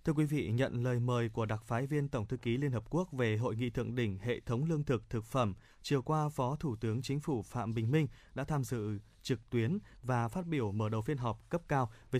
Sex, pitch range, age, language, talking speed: male, 115-145 Hz, 20-39, Vietnamese, 255 wpm